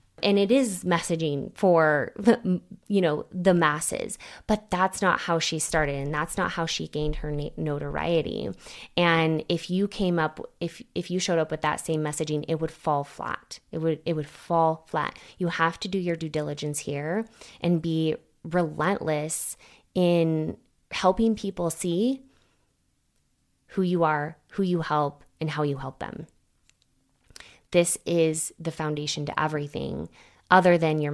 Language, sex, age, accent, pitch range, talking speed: English, female, 20-39, American, 150-180 Hz, 160 wpm